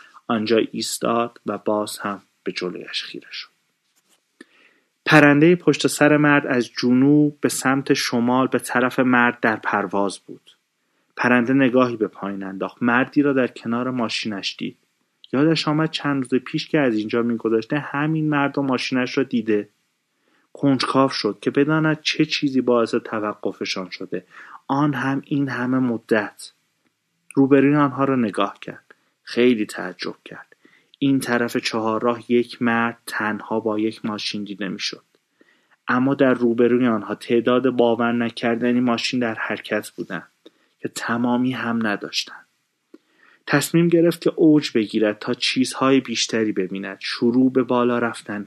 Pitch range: 110-135 Hz